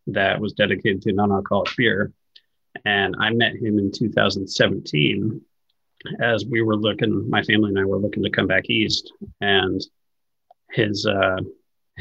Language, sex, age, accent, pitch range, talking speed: English, male, 30-49, American, 95-110 Hz, 145 wpm